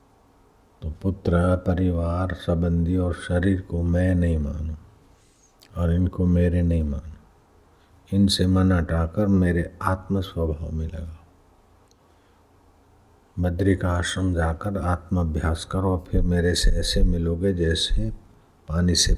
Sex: male